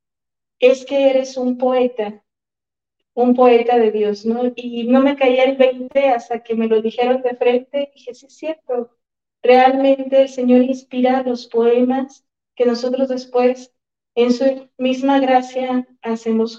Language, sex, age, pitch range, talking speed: Spanish, female, 40-59, 225-255 Hz, 150 wpm